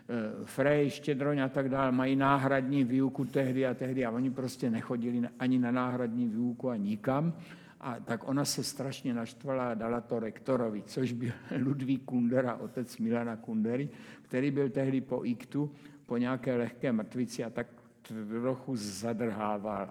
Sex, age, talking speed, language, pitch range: male, 60-79, 155 wpm, Czech, 120-140 Hz